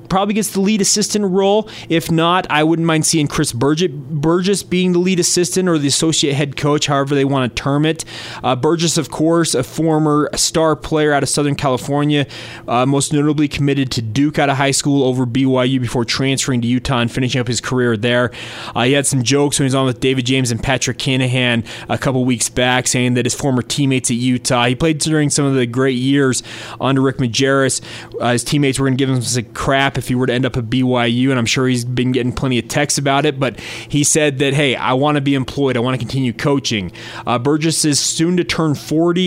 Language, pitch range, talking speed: English, 125-155 Hz, 230 wpm